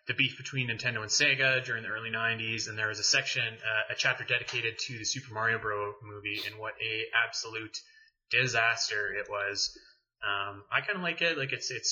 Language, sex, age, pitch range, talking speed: English, male, 20-39, 110-130 Hz, 205 wpm